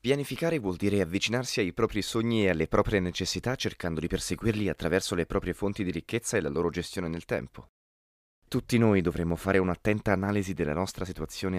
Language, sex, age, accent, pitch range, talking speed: Italian, male, 30-49, native, 85-115 Hz, 180 wpm